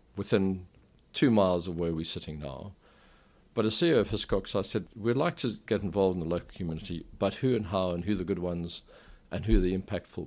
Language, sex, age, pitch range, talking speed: English, male, 50-69, 85-105 Hz, 230 wpm